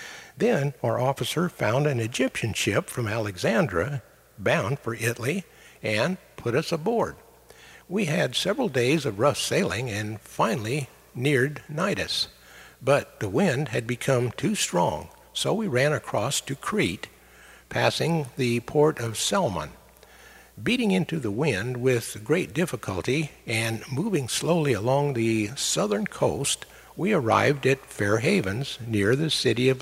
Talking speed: 135 wpm